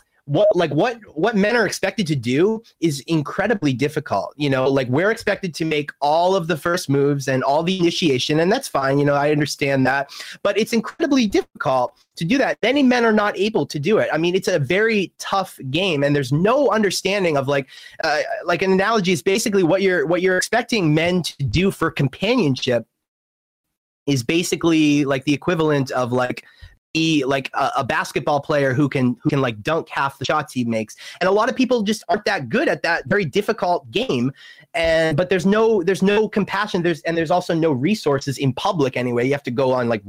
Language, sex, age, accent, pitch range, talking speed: English, male, 30-49, American, 140-195 Hz, 210 wpm